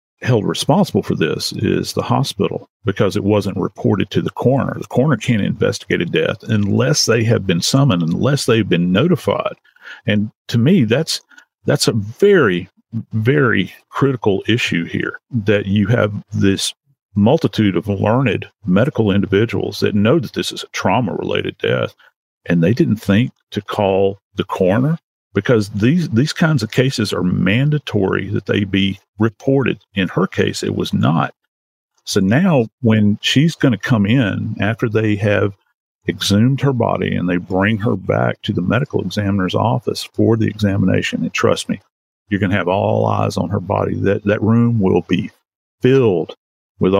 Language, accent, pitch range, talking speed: English, American, 100-120 Hz, 160 wpm